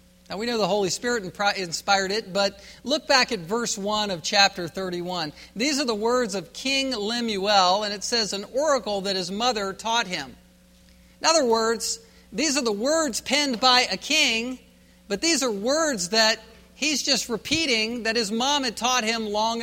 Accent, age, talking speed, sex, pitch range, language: American, 50-69, 185 wpm, male, 185-255 Hz, English